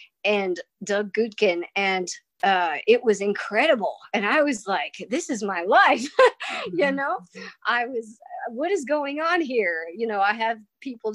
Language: English